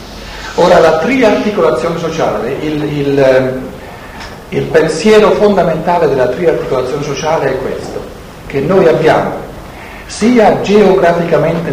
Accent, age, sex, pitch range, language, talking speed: native, 60-79, male, 125-165 Hz, Italian, 95 wpm